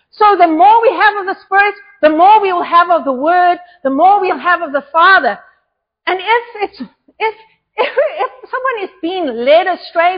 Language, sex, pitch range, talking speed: English, female, 305-415 Hz, 200 wpm